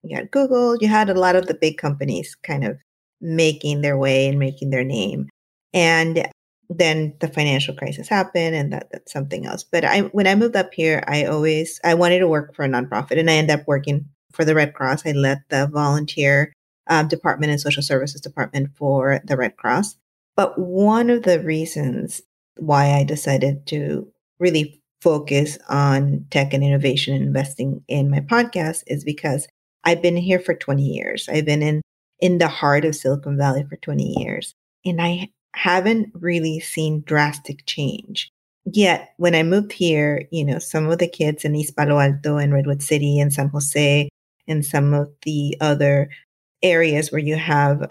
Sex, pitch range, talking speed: female, 140-170 Hz, 185 wpm